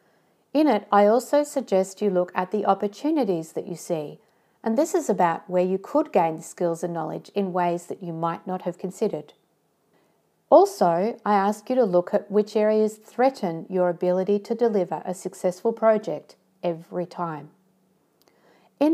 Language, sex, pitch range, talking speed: English, female, 180-220 Hz, 170 wpm